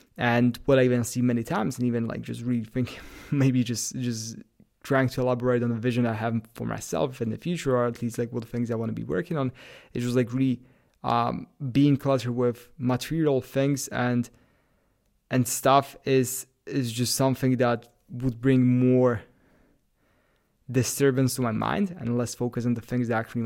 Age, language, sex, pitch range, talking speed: 20-39, English, male, 115-130 Hz, 190 wpm